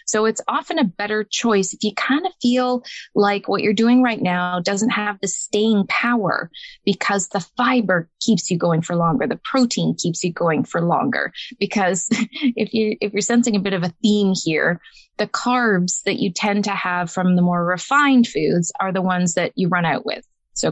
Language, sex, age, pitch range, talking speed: English, female, 20-39, 175-220 Hz, 205 wpm